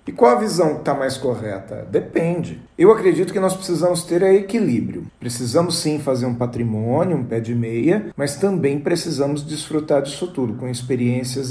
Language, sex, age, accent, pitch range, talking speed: English, male, 40-59, Brazilian, 130-175 Hz, 170 wpm